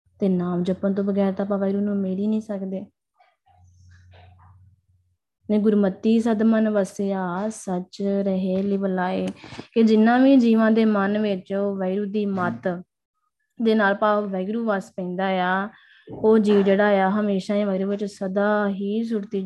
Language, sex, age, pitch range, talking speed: Punjabi, female, 20-39, 190-210 Hz, 130 wpm